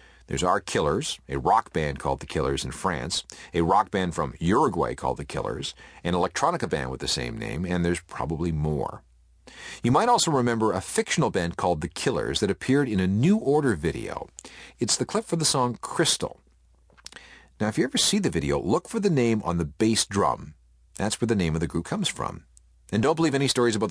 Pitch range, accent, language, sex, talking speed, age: 75-105 Hz, American, English, male, 210 wpm, 40-59